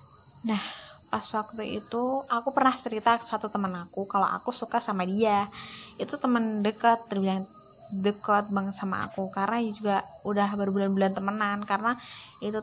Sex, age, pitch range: female, 20-39, 195-235 Hz